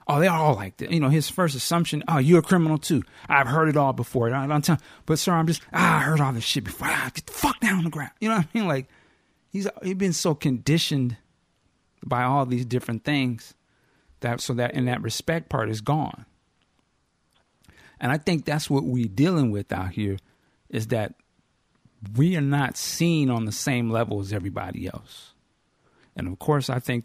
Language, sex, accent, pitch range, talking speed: English, male, American, 115-150 Hz, 205 wpm